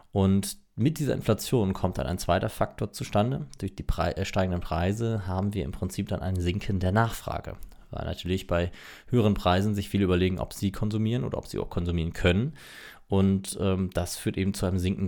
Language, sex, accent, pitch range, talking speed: German, male, German, 90-105 Hz, 190 wpm